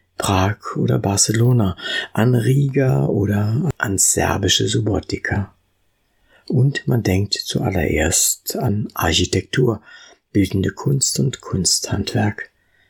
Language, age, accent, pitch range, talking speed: German, 60-79, German, 90-115 Hz, 90 wpm